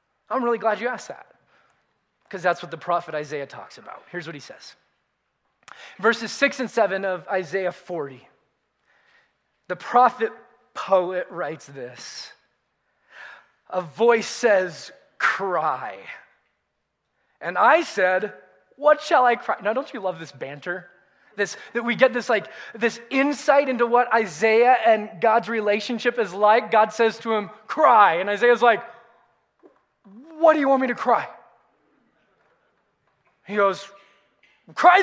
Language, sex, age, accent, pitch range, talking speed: English, male, 20-39, American, 185-245 Hz, 140 wpm